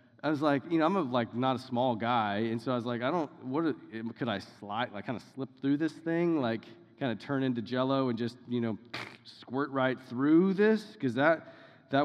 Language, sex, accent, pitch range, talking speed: English, male, American, 110-130 Hz, 230 wpm